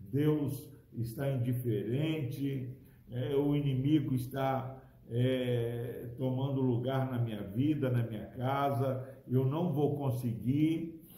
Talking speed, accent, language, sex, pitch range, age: 95 wpm, Brazilian, Portuguese, male, 125-180 Hz, 60-79